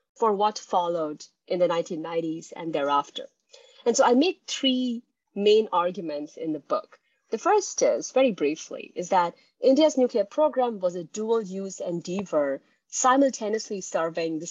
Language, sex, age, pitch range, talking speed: English, female, 30-49, 175-250 Hz, 150 wpm